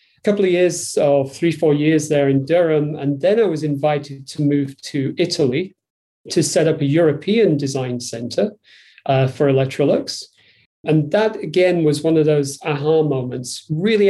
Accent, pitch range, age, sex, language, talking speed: British, 145-175 Hz, 40-59, male, English, 165 wpm